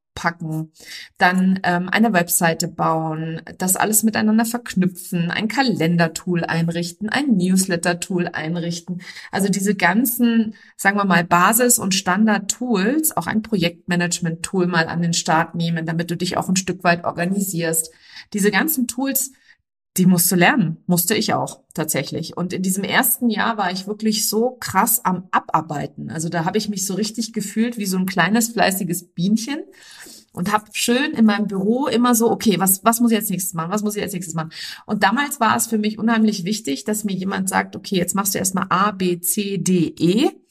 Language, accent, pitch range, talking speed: German, German, 170-215 Hz, 180 wpm